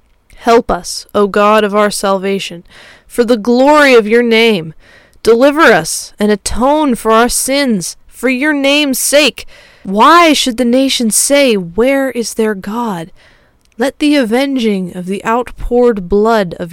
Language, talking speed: English, 145 wpm